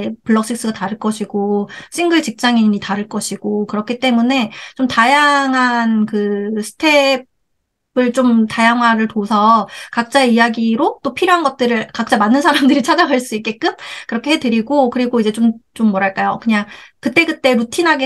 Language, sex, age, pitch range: Korean, female, 30-49, 220-275 Hz